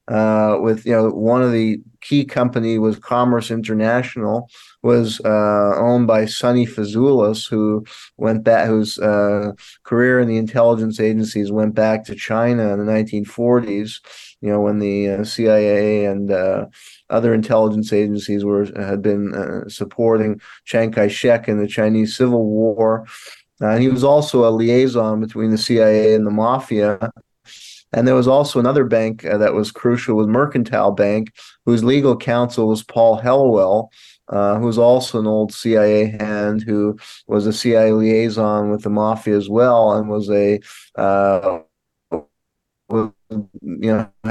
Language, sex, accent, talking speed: English, male, American, 155 wpm